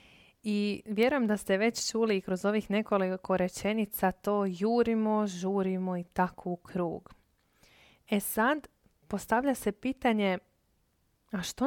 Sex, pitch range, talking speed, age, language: female, 190-225 Hz, 125 wpm, 20-39, Croatian